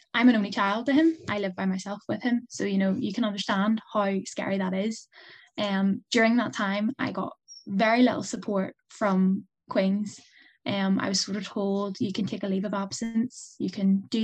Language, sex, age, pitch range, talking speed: English, female, 10-29, 200-235 Hz, 205 wpm